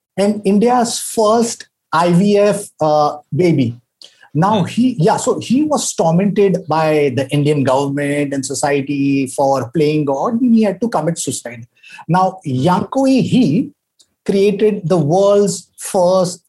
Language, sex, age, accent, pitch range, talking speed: English, male, 50-69, Indian, 160-245 Hz, 125 wpm